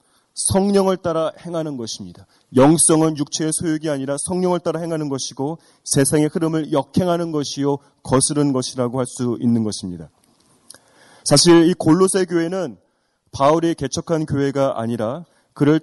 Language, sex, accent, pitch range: Korean, male, native, 140-170 Hz